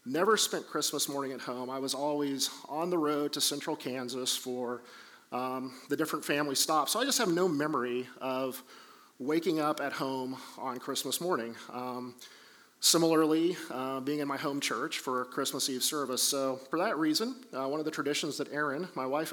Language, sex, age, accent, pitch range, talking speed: English, male, 40-59, American, 130-155 Hz, 185 wpm